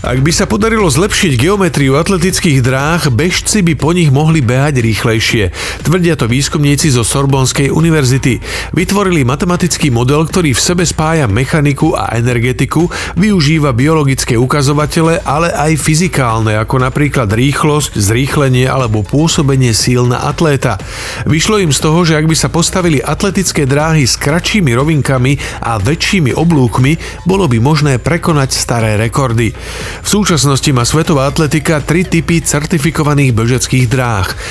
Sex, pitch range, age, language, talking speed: male, 125-160 Hz, 40-59, Slovak, 135 wpm